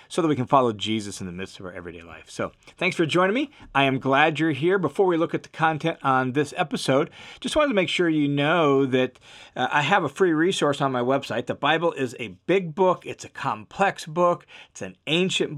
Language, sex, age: English, male, 40-59